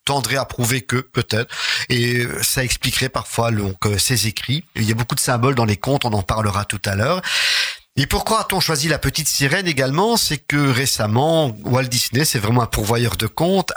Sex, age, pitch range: male, 50-69, 115-145 Hz